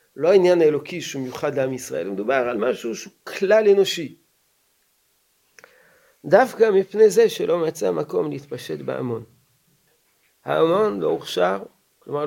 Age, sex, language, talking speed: 40-59, male, Hebrew, 120 wpm